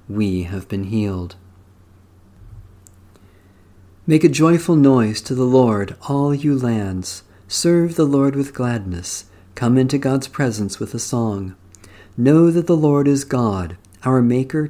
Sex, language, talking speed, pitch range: male, English, 140 wpm, 95-140 Hz